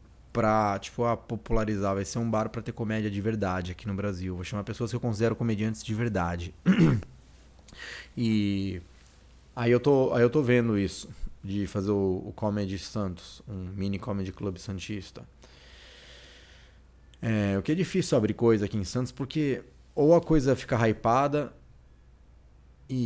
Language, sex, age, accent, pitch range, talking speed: Portuguese, male, 20-39, Brazilian, 95-130 Hz, 160 wpm